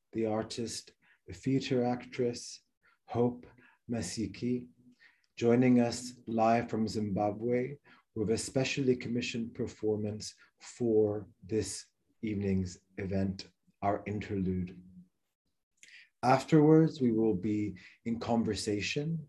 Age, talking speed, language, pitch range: 30-49, 90 wpm, English, 105-125 Hz